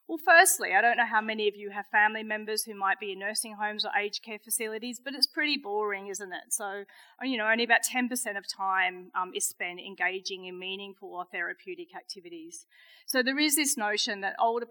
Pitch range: 180-250 Hz